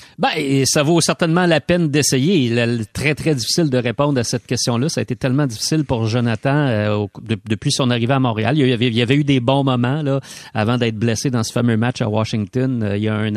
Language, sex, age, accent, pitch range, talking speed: French, male, 40-59, Canadian, 120-155 Hz, 260 wpm